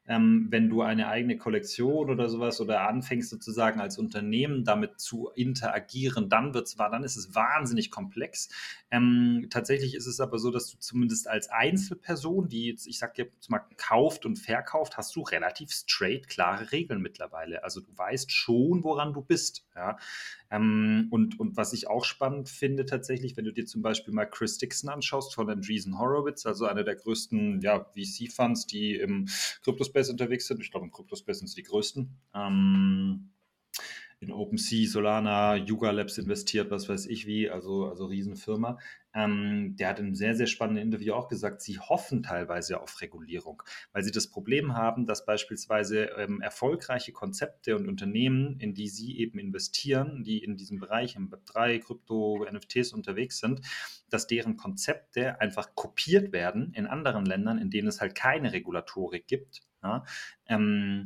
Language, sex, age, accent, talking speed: German, male, 30-49, German, 170 wpm